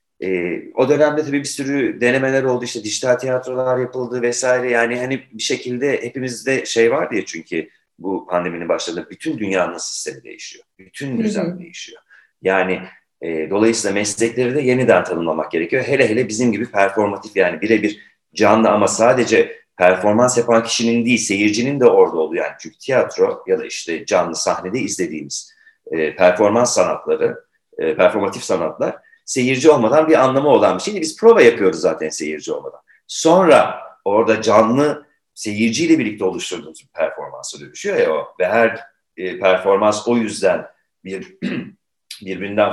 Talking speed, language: 145 wpm, Turkish